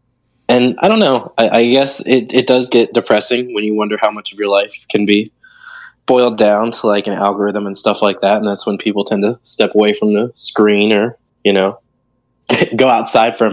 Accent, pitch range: American, 105-125 Hz